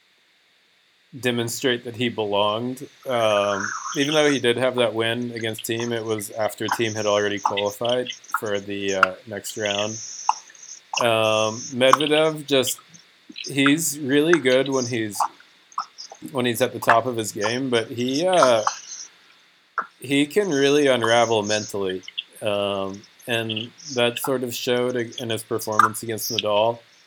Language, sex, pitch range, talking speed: English, male, 110-130 Hz, 135 wpm